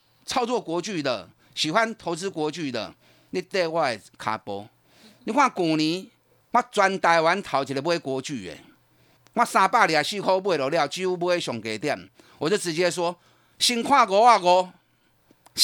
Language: Chinese